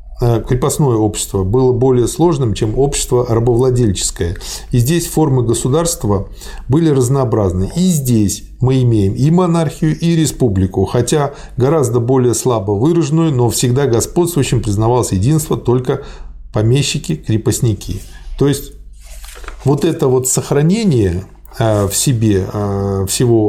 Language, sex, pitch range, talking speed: Russian, male, 105-135 Hz, 110 wpm